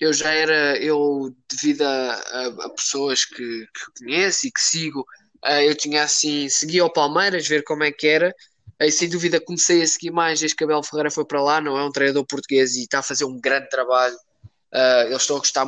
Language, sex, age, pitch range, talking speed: Portuguese, male, 20-39, 140-155 Hz, 225 wpm